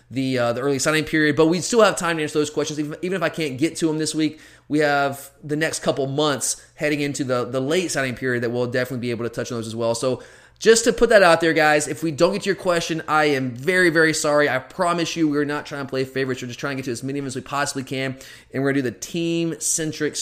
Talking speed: 290 wpm